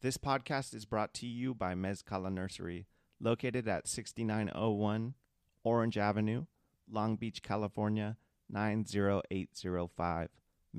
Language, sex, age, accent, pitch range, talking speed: English, male, 30-49, American, 95-110 Hz, 100 wpm